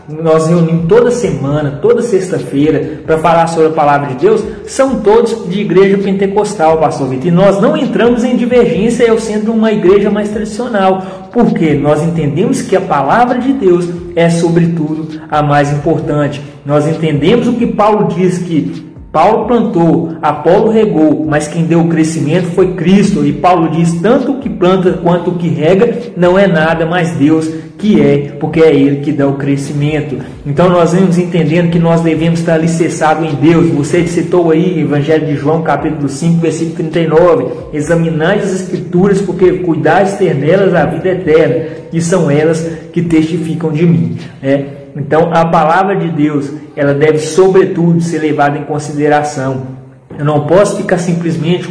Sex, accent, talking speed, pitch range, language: male, Brazilian, 170 wpm, 150-185 Hz, Portuguese